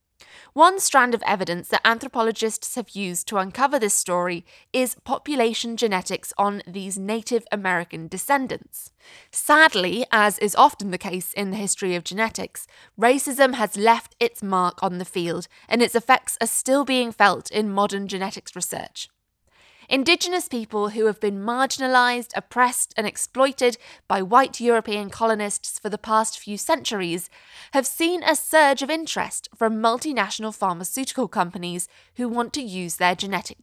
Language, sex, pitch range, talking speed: English, female, 195-255 Hz, 150 wpm